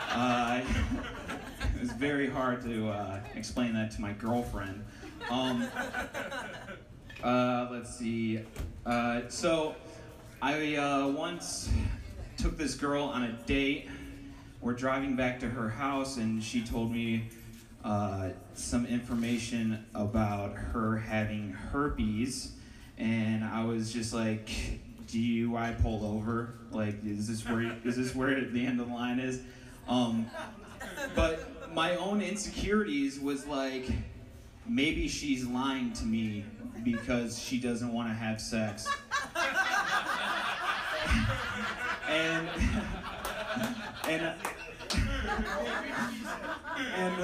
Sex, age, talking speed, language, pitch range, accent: male, 30-49, 115 wpm, English, 115-155 Hz, American